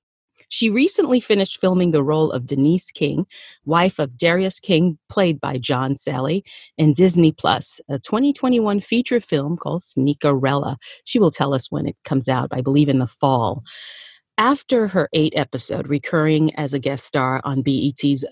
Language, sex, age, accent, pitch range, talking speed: English, female, 40-59, American, 140-175 Hz, 165 wpm